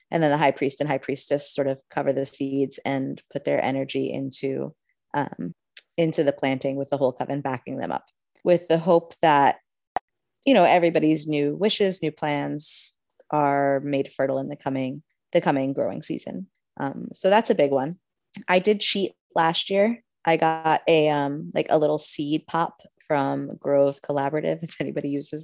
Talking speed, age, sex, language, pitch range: 180 wpm, 20-39, female, English, 140-155 Hz